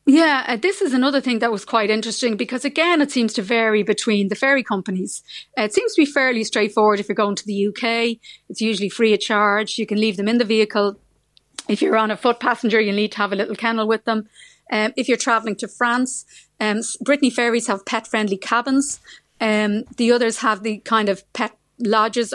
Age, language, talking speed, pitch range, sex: 30-49, English, 220 wpm, 210-235 Hz, female